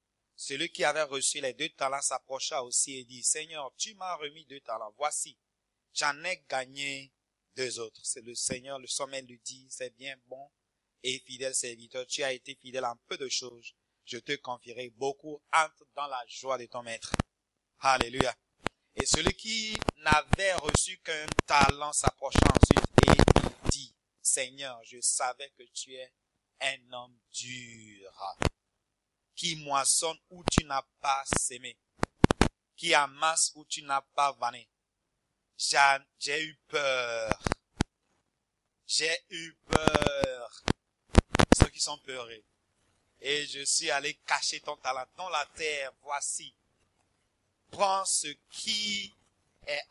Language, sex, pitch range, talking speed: English, male, 120-150 Hz, 140 wpm